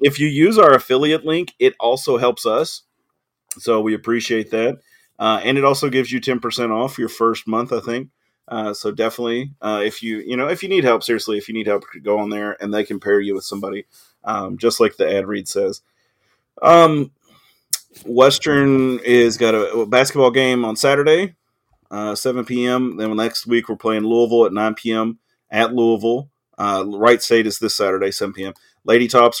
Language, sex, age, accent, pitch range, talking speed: English, male, 30-49, American, 110-125 Hz, 195 wpm